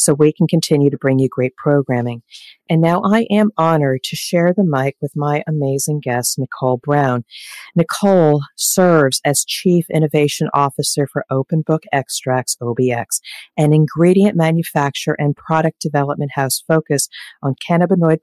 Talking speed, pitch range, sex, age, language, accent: 150 wpm, 135-160 Hz, female, 40-59, English, American